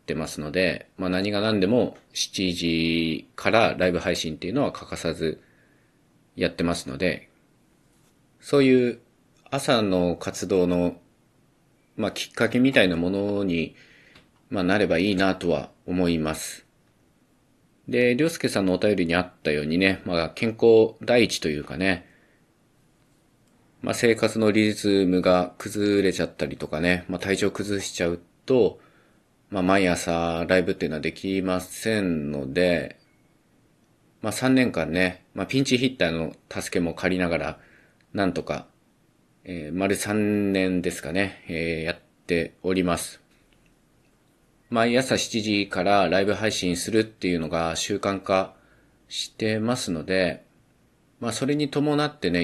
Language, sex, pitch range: Japanese, male, 85-110 Hz